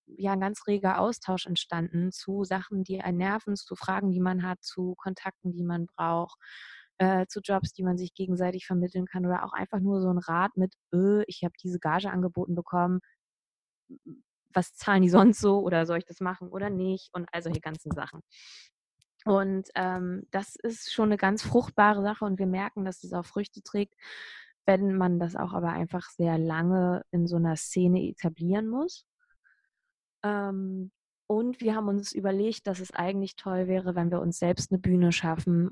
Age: 20-39